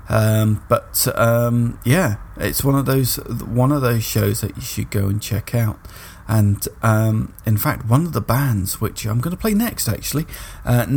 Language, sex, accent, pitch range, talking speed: English, male, British, 100-120 Hz, 190 wpm